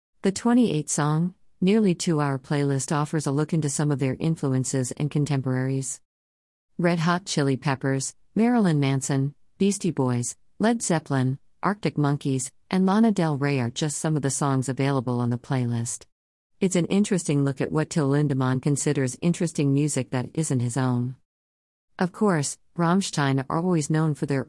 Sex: female